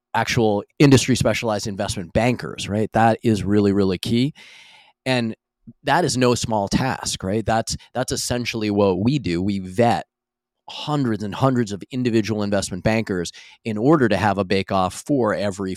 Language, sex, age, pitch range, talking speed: English, male, 30-49, 100-115 Hz, 155 wpm